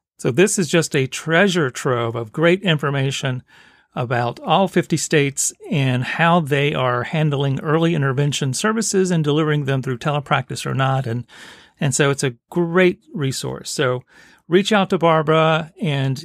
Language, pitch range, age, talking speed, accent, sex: English, 135-185 Hz, 40-59, 155 wpm, American, male